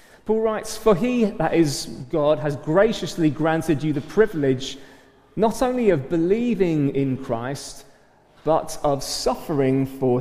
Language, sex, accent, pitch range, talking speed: English, male, British, 140-185 Hz, 135 wpm